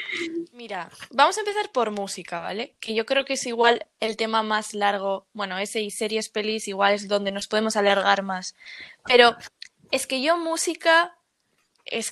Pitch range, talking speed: 215-275 Hz, 175 wpm